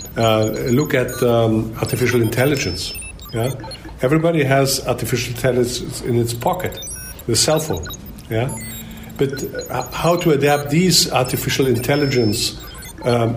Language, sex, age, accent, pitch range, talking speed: English, male, 50-69, German, 110-135 Hz, 120 wpm